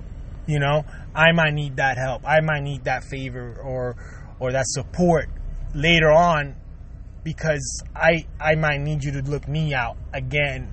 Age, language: 20-39, English